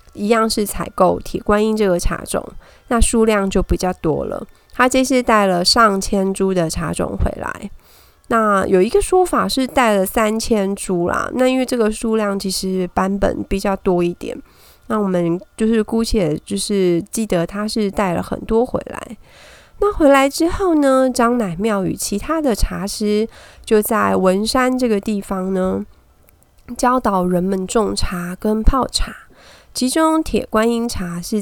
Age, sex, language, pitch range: 30-49, female, Chinese, 185-235 Hz